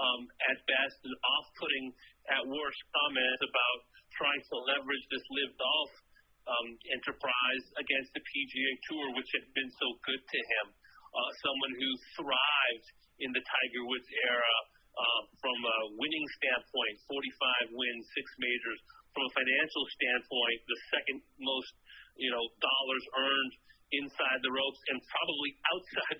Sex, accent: male, American